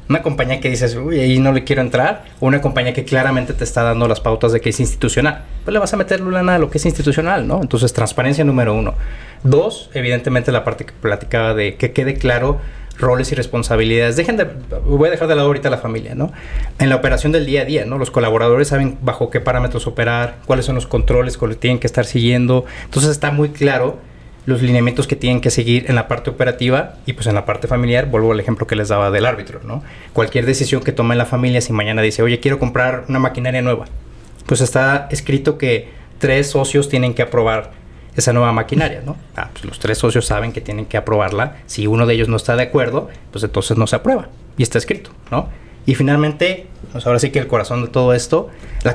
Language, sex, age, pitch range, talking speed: Spanish, male, 30-49, 115-140 Hz, 225 wpm